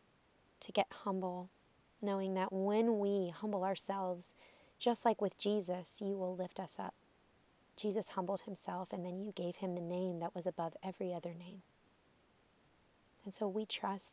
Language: English